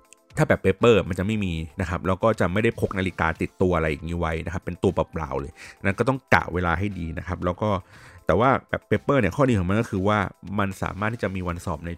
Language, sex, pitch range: Thai, male, 90-120 Hz